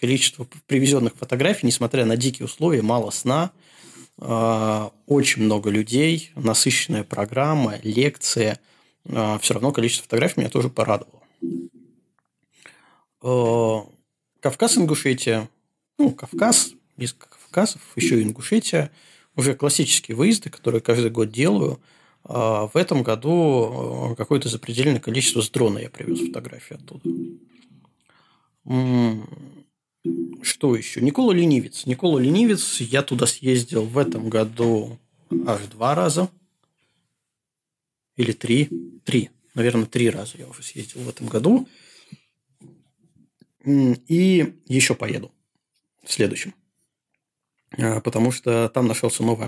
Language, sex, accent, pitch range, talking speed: Russian, male, native, 115-150 Hz, 110 wpm